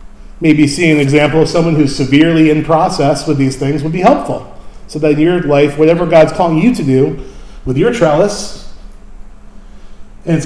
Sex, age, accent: male, 40-59, American